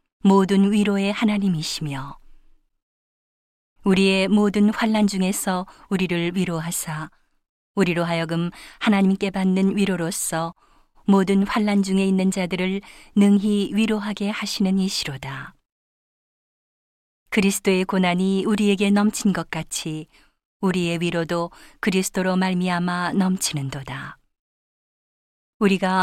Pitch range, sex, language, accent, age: 175-200 Hz, female, Korean, native, 40-59